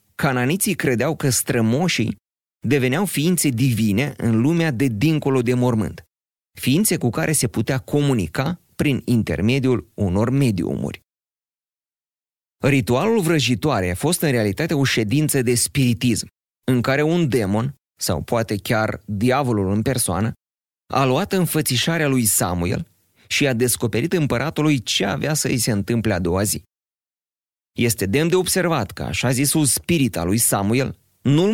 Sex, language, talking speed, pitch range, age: male, Romanian, 140 wpm, 105-135 Hz, 30-49